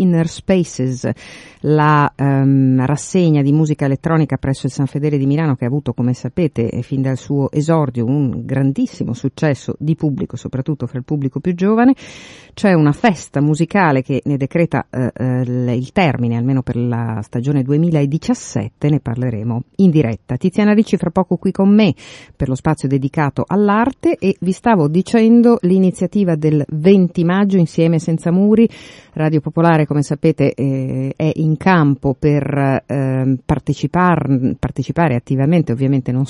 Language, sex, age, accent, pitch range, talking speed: Italian, female, 50-69, native, 135-185 Hz, 150 wpm